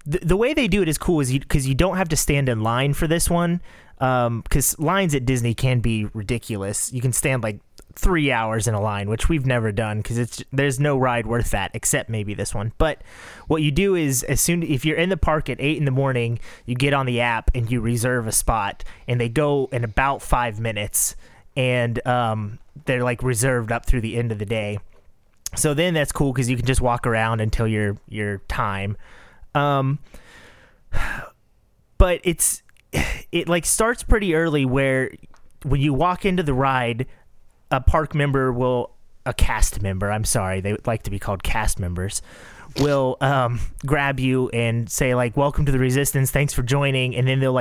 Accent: American